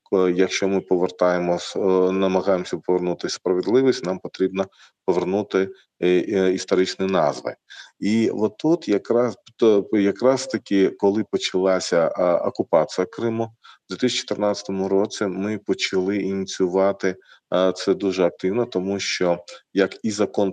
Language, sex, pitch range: Ukrainian, male, 95-105 Hz